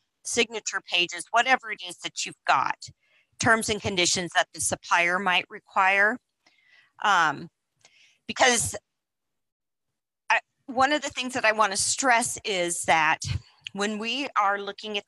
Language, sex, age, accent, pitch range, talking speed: English, female, 40-59, American, 155-200 Hz, 130 wpm